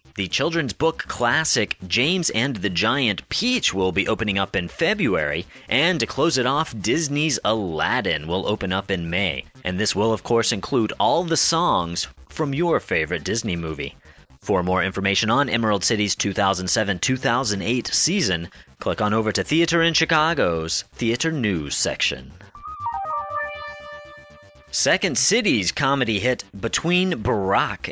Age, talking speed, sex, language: 30-49, 140 wpm, male, English